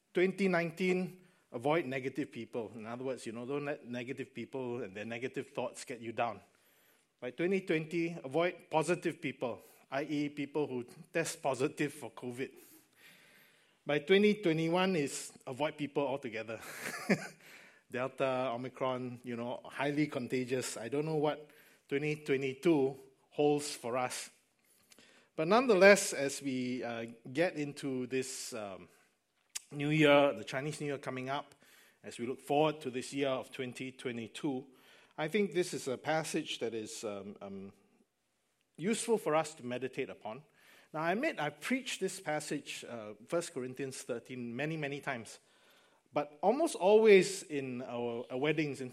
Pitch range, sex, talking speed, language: 125-155 Hz, male, 140 wpm, English